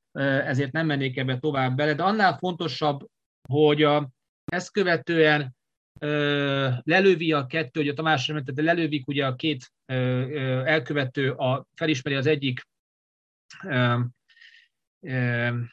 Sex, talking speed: male, 120 wpm